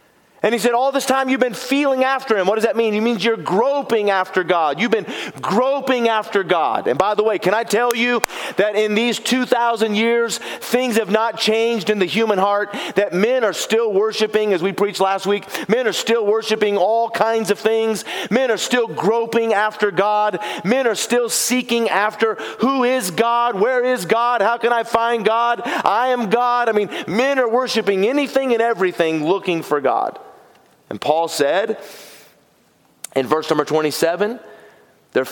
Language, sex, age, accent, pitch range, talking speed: English, male, 40-59, American, 200-240 Hz, 185 wpm